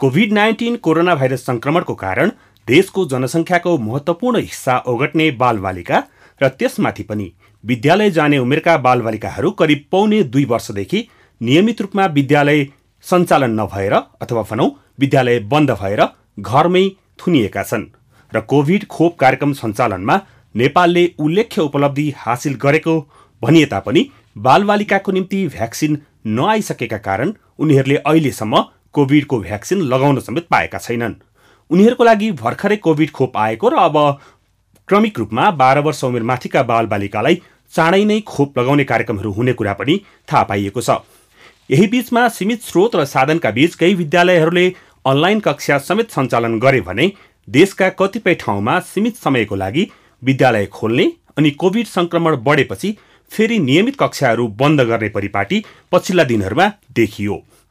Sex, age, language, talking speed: male, 40-59, English, 95 wpm